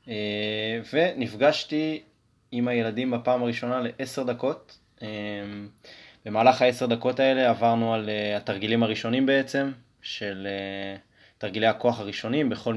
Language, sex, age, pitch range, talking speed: Hebrew, male, 20-39, 105-130 Hz, 115 wpm